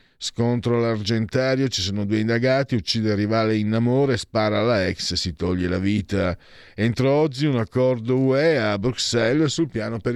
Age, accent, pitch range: 50-69, native, 90-120 Hz